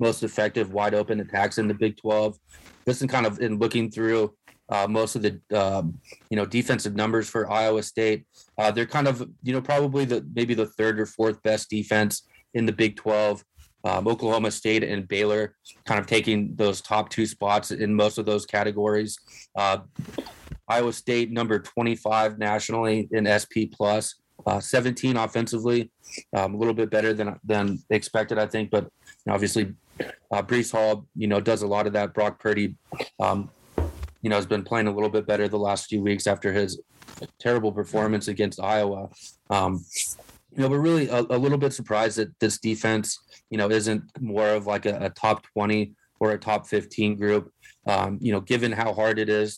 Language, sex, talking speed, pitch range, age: English, male, 190 wpm, 105-110 Hz, 30-49